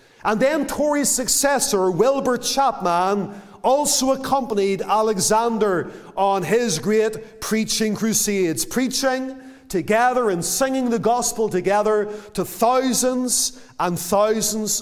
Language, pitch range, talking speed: English, 200-245 Hz, 100 wpm